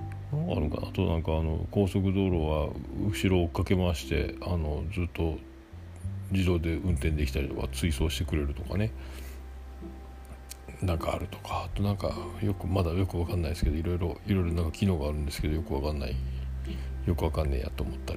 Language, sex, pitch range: Japanese, male, 75-100 Hz